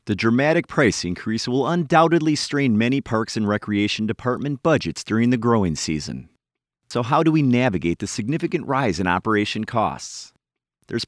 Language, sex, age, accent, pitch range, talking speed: English, male, 30-49, American, 100-145 Hz, 155 wpm